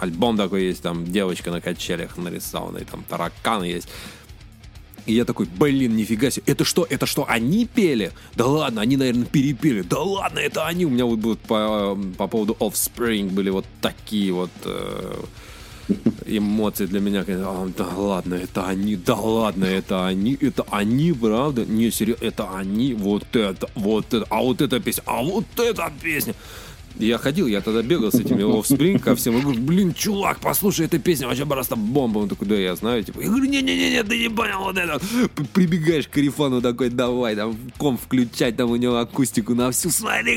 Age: 20-39